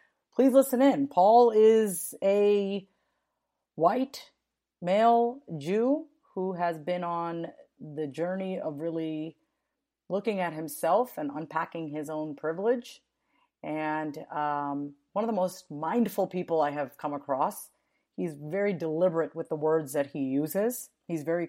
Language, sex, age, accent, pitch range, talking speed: English, female, 40-59, American, 140-180 Hz, 135 wpm